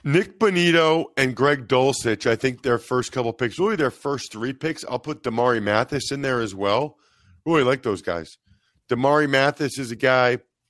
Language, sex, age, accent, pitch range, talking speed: English, male, 40-59, American, 115-150 Hz, 185 wpm